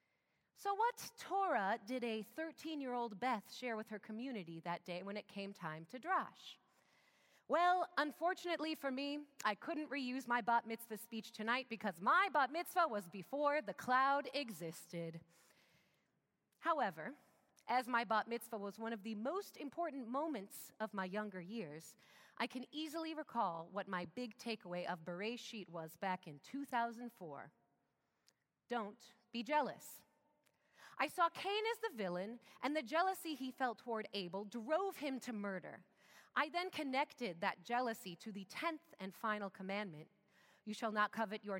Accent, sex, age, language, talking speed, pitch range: American, female, 30-49, English, 155 wpm, 205-300 Hz